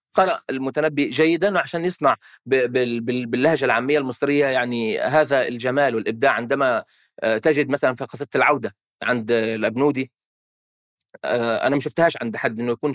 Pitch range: 130-155 Hz